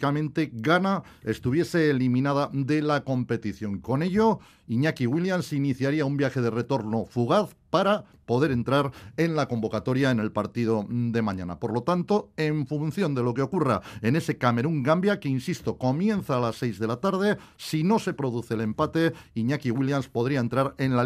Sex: male